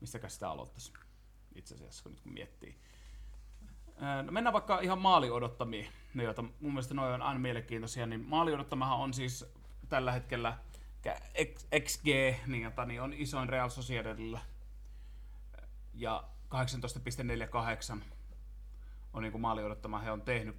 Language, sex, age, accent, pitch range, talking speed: Finnish, male, 30-49, native, 105-130 Hz, 120 wpm